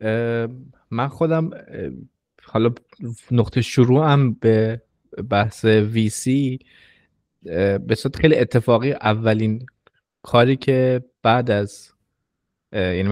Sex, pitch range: male, 105-130 Hz